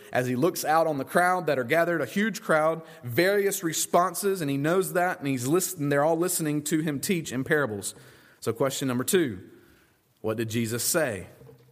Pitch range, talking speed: 120-170 Hz, 195 wpm